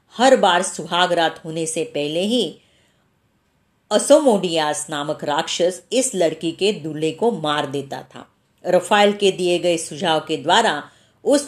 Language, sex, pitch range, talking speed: Marathi, female, 160-205 Hz, 140 wpm